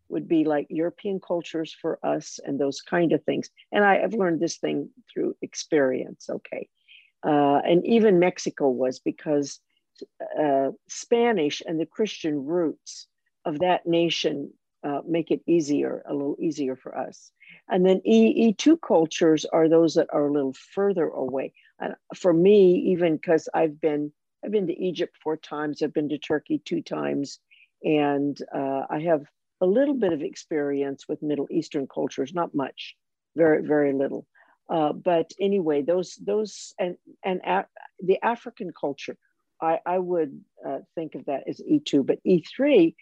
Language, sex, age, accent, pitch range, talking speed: English, female, 50-69, American, 150-190 Hz, 165 wpm